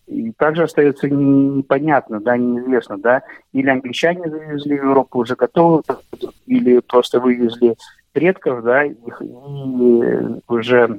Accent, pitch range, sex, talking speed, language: native, 115-135 Hz, male, 115 wpm, Russian